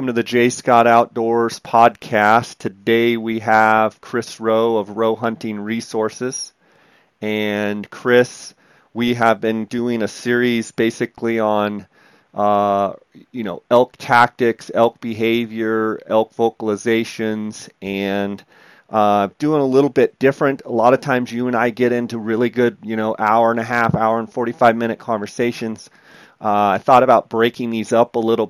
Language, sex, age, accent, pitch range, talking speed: English, male, 40-59, American, 110-120 Hz, 155 wpm